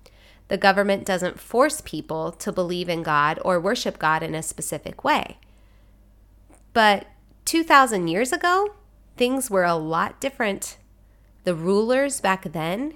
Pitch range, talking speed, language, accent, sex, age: 160-250 Hz, 135 wpm, English, American, female, 30-49